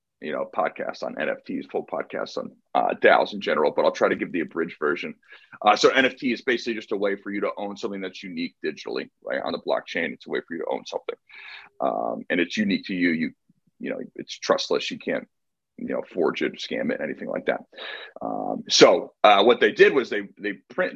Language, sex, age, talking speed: English, male, 30-49, 230 wpm